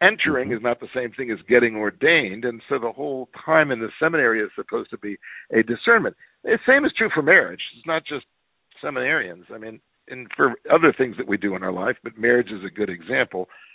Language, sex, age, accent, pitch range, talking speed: English, male, 50-69, American, 110-155 Hz, 225 wpm